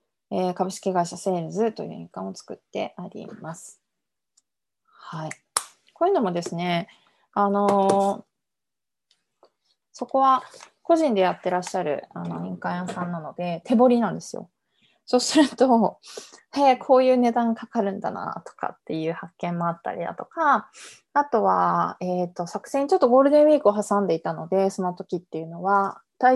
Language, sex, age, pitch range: Japanese, female, 20-39, 175-240 Hz